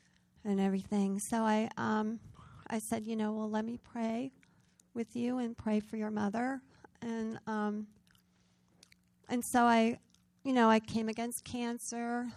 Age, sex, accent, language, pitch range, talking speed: 40-59, female, American, English, 205-240 Hz, 150 wpm